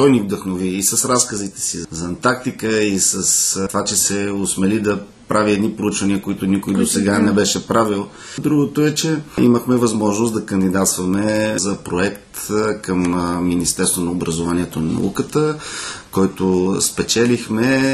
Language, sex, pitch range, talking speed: Bulgarian, male, 95-115 Hz, 145 wpm